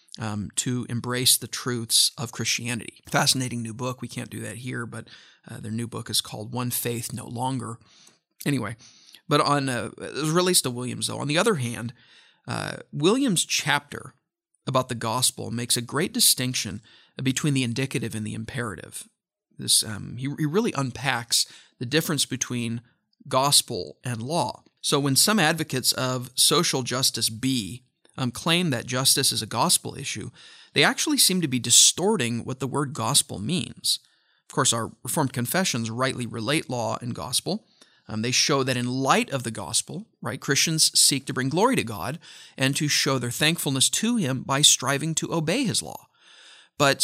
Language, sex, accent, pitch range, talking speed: English, male, American, 120-150 Hz, 175 wpm